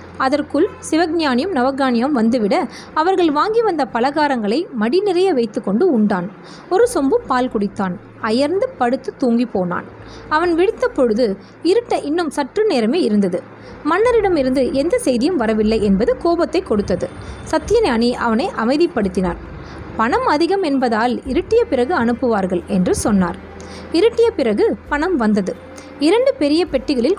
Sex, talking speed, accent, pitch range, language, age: female, 115 wpm, native, 230-345 Hz, Tamil, 20-39